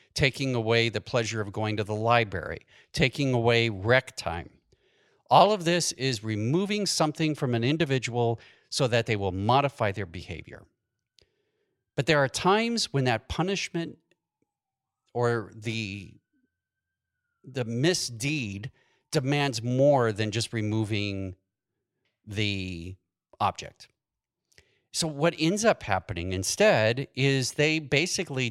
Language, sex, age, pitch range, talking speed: English, male, 40-59, 110-155 Hz, 120 wpm